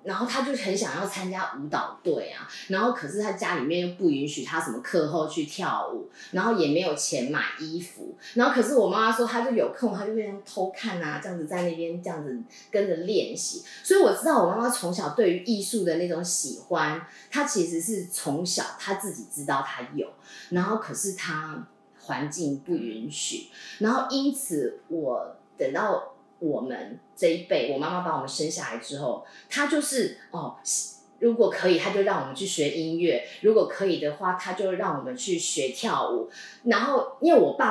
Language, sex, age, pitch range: Chinese, female, 20-39, 170-240 Hz